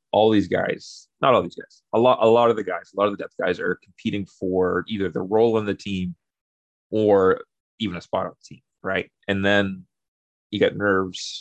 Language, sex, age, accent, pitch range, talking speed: English, male, 30-49, American, 90-105 Hz, 220 wpm